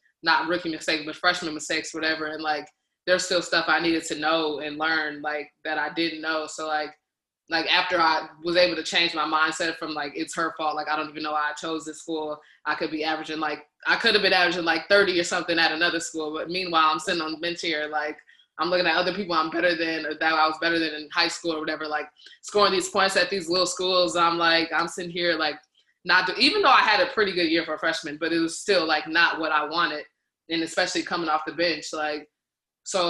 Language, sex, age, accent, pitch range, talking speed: English, female, 20-39, American, 155-170 Hz, 250 wpm